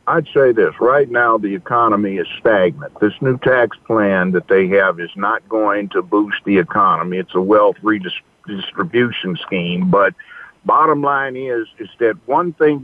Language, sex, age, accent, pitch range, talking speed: English, male, 60-79, American, 110-155 Hz, 170 wpm